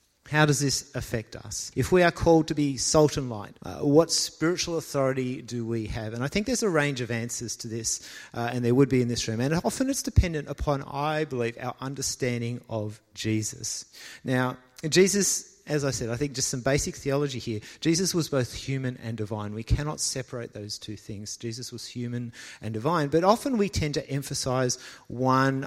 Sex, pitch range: male, 120-150 Hz